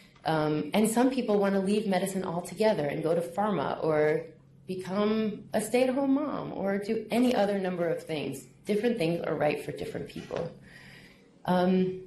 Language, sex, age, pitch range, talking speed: English, female, 30-49, 150-190 Hz, 165 wpm